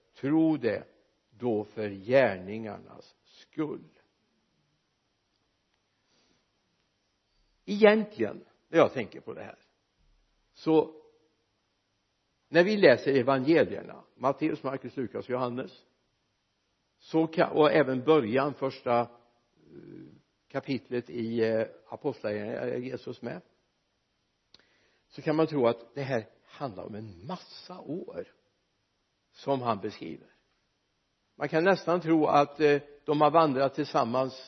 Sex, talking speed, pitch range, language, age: male, 95 wpm, 120-155 Hz, Swedish, 60-79